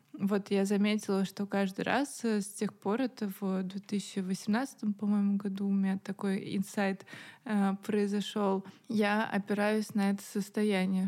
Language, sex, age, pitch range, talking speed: Russian, female, 20-39, 200-225 Hz, 130 wpm